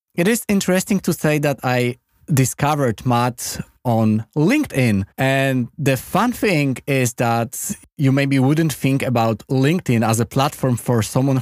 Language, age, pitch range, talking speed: Polish, 20-39, 115-140 Hz, 145 wpm